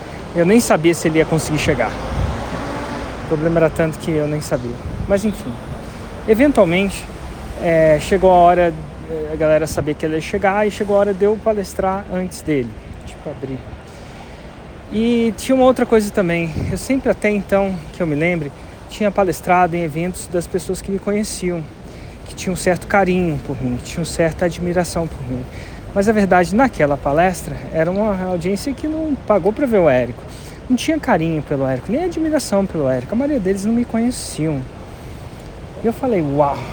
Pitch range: 155-210 Hz